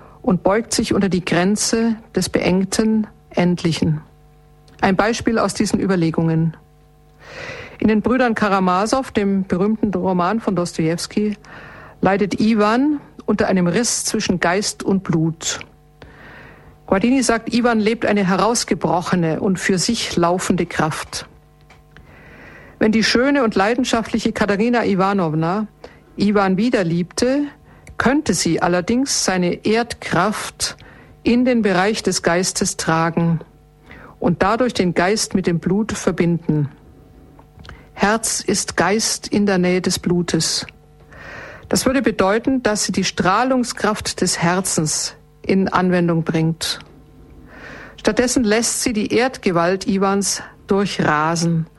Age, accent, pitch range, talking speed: 50-69, German, 175-225 Hz, 115 wpm